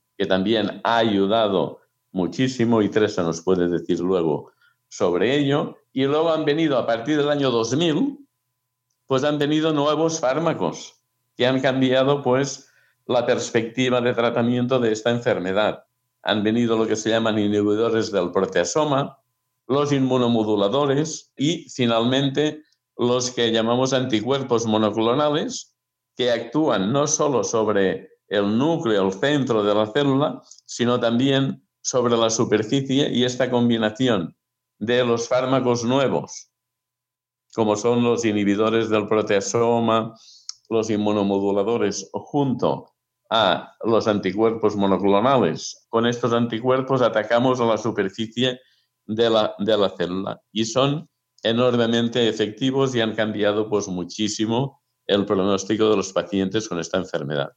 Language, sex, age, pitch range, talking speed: Spanish, male, 60-79, 110-130 Hz, 125 wpm